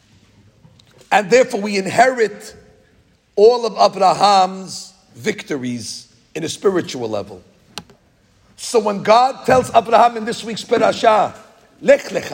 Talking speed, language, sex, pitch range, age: 100 wpm, English, male, 200-245 Hz, 50-69